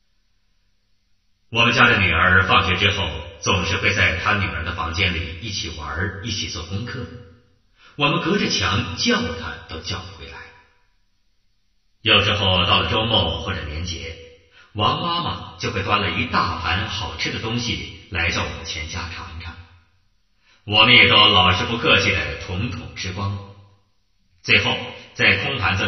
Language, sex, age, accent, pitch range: Chinese, male, 30-49, native, 85-100 Hz